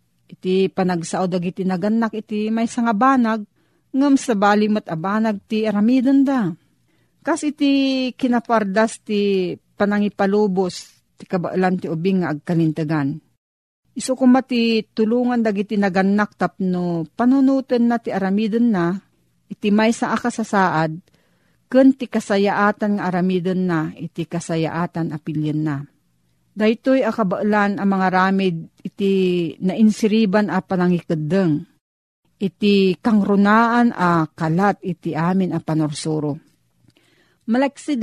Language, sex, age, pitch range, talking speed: Filipino, female, 40-59, 175-220 Hz, 110 wpm